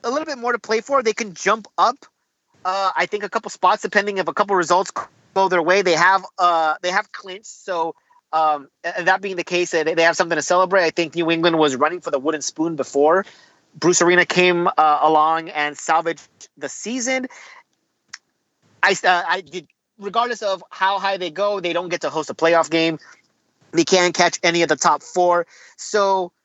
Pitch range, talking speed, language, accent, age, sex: 165-200 Hz, 200 wpm, English, American, 30-49, male